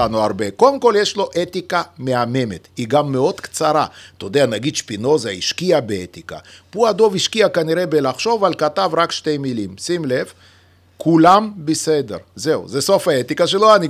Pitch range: 130-210 Hz